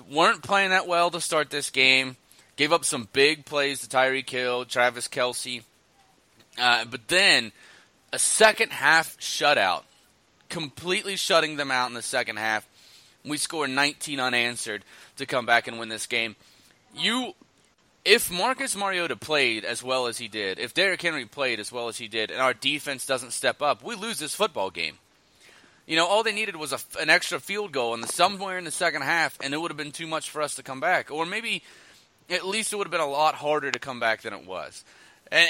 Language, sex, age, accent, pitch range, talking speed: English, male, 30-49, American, 120-160 Hz, 205 wpm